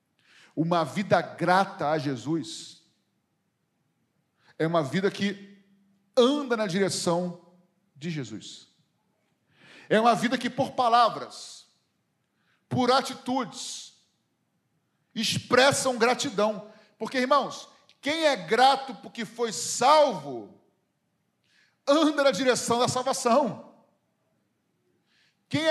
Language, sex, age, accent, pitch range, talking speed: Portuguese, male, 40-59, Brazilian, 185-290 Hz, 90 wpm